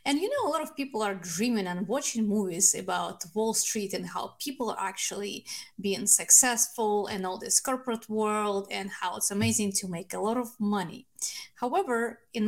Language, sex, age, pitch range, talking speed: English, female, 30-49, 195-240 Hz, 190 wpm